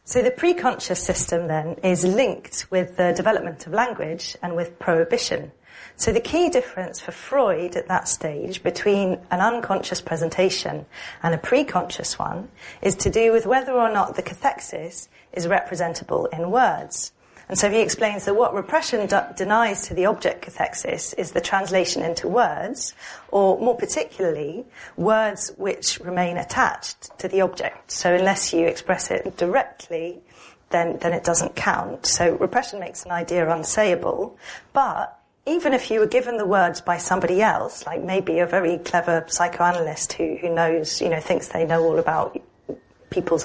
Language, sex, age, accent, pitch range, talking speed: English, female, 40-59, British, 170-220 Hz, 165 wpm